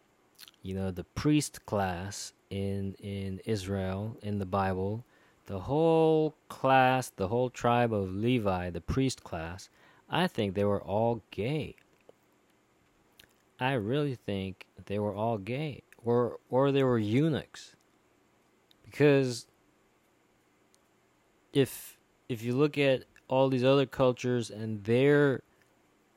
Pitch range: 100-130 Hz